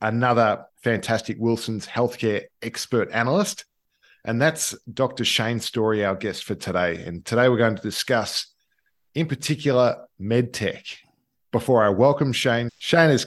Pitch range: 105-125 Hz